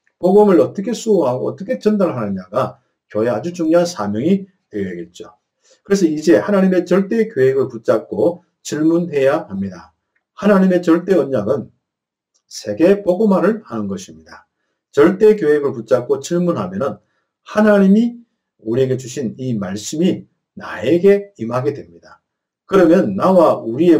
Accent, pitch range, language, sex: native, 125-200 Hz, Korean, male